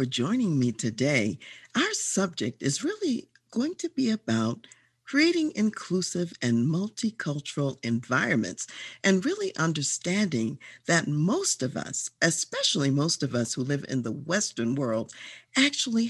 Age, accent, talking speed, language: 50-69, American, 125 wpm, English